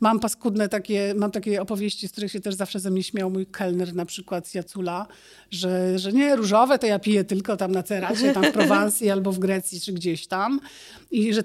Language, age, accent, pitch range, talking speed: Polish, 50-69, native, 185-225 Hz, 220 wpm